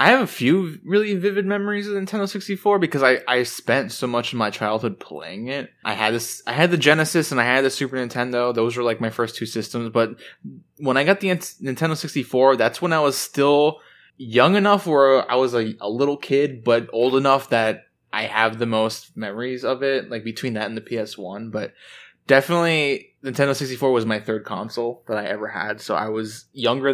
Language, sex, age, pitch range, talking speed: English, male, 20-39, 110-145 Hz, 215 wpm